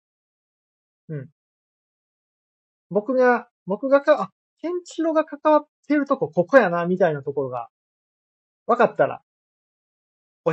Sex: male